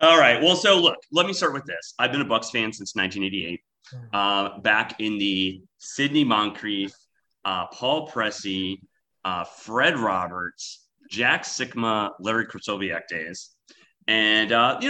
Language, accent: English, American